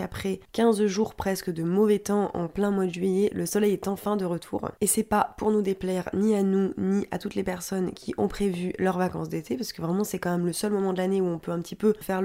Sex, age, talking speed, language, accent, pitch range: female, 20-39, 275 wpm, French, French, 175-200 Hz